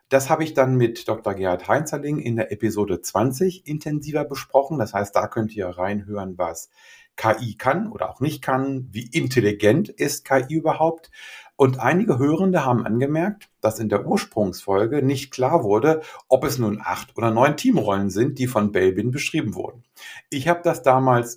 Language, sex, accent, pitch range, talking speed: German, male, German, 110-145 Hz, 170 wpm